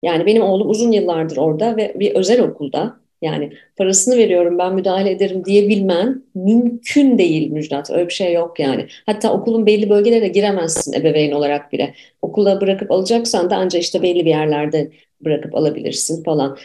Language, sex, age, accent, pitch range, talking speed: Turkish, female, 40-59, native, 170-235 Hz, 165 wpm